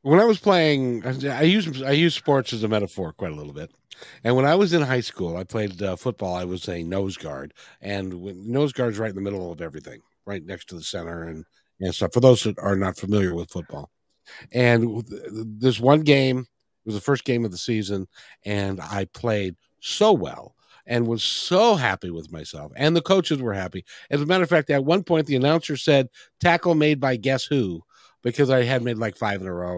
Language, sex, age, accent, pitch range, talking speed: English, male, 60-79, American, 105-165 Hz, 225 wpm